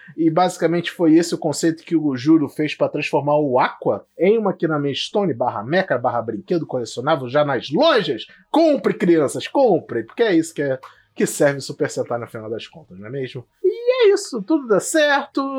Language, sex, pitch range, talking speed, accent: Portuguese, male, 135-210 Hz, 195 wpm, Brazilian